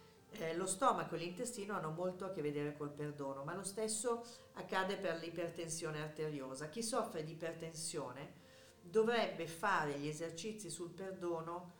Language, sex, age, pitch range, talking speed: Italian, female, 50-69, 150-220 Hz, 145 wpm